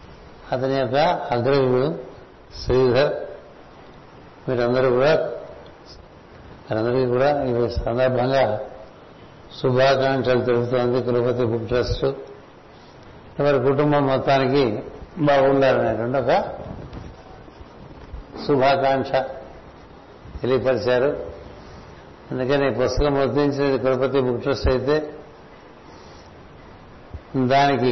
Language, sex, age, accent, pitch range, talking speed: Telugu, male, 60-79, native, 120-140 Hz, 65 wpm